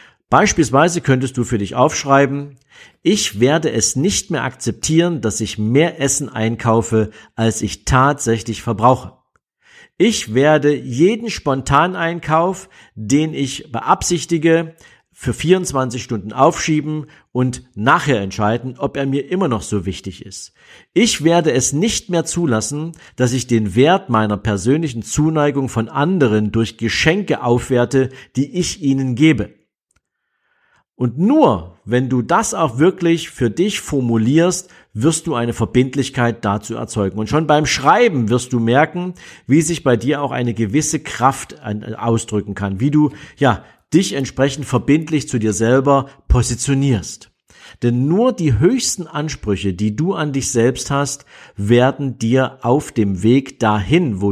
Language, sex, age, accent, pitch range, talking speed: German, male, 50-69, German, 115-155 Hz, 140 wpm